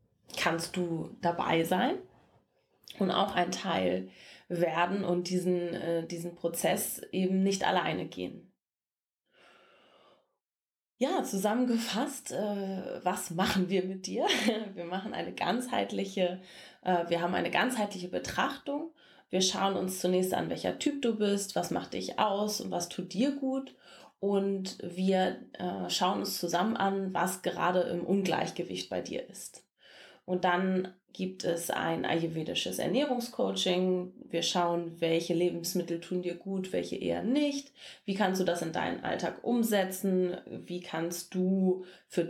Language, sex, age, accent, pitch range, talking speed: English, female, 20-39, German, 175-200 Hz, 130 wpm